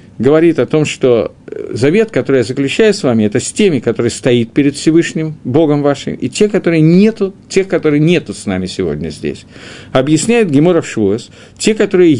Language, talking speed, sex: Russian, 170 wpm, male